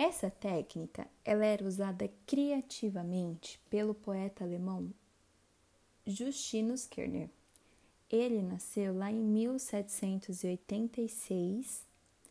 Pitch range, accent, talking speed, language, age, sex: 185-225 Hz, Brazilian, 75 wpm, Portuguese, 20-39, female